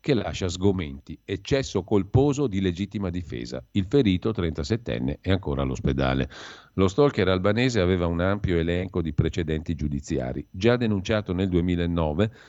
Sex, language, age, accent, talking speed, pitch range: male, Italian, 50-69, native, 135 wpm, 80-105 Hz